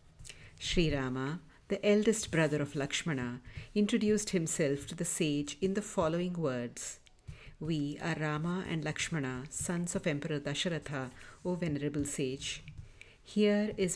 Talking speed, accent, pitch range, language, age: 130 wpm, Indian, 140-180 Hz, English, 50-69